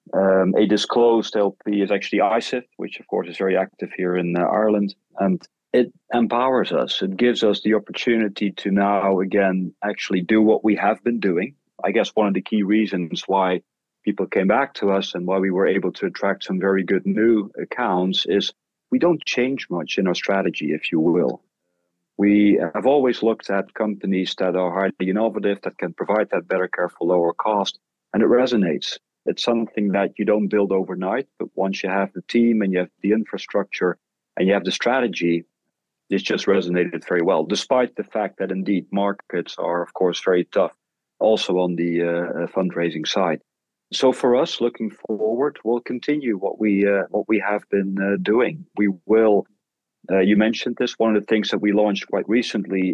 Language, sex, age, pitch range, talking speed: English, male, 40-59, 95-110 Hz, 190 wpm